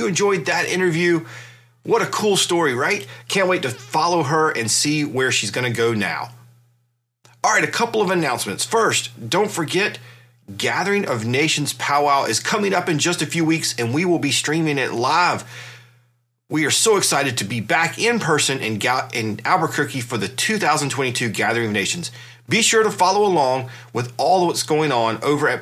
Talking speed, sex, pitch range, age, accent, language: 185 wpm, male, 120-165 Hz, 30-49, American, English